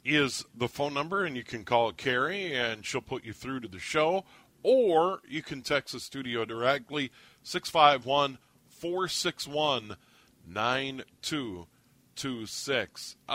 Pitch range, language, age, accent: 130-165 Hz, English, 50-69, American